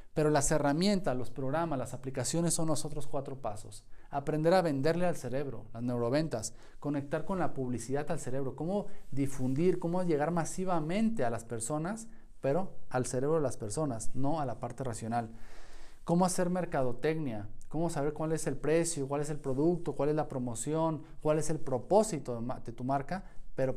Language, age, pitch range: Spanish, 40-59, 125-160 Hz